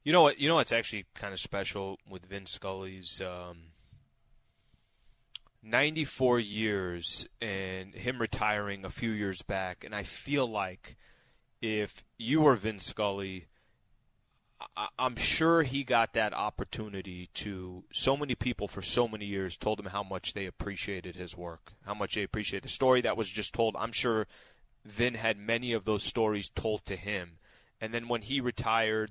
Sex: male